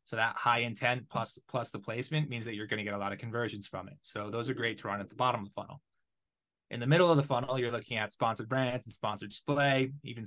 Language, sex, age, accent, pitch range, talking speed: English, male, 20-39, American, 105-130 Hz, 275 wpm